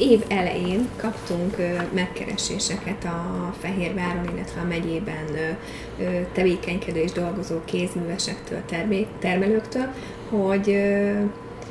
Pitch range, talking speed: 175-210 Hz, 75 wpm